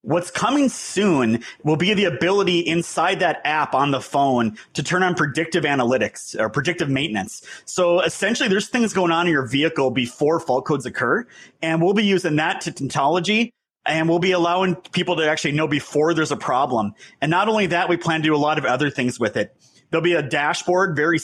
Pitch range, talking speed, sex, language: 140-175 Hz, 205 wpm, male, English